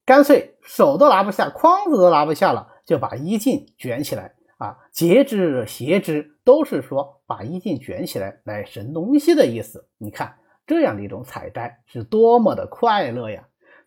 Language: Chinese